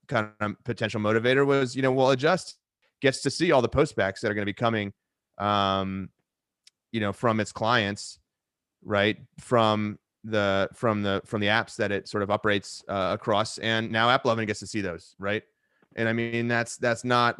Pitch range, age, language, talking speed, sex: 105-120 Hz, 30-49, English, 195 wpm, male